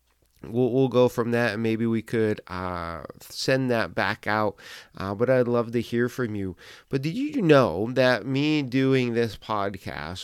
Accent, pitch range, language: American, 110-135 Hz, English